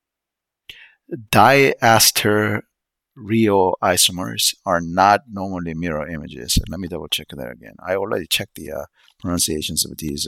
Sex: male